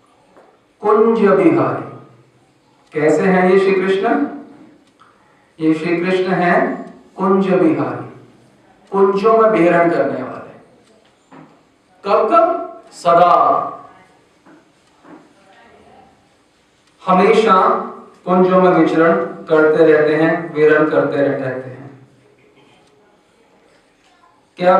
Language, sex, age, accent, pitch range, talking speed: Hindi, male, 50-69, native, 155-200 Hz, 80 wpm